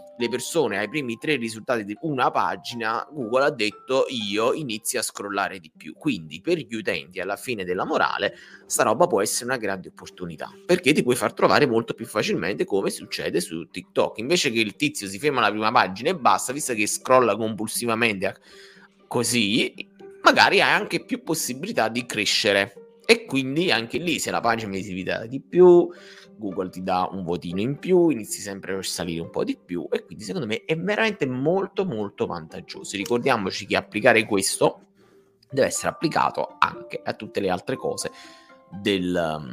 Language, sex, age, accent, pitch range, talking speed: Italian, male, 30-49, native, 95-155 Hz, 175 wpm